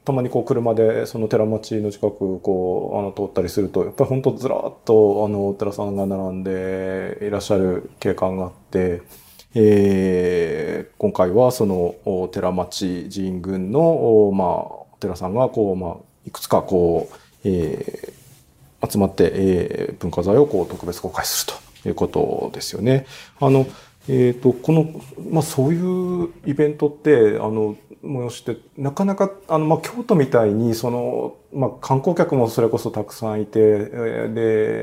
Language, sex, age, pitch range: Japanese, male, 40-59, 100-135 Hz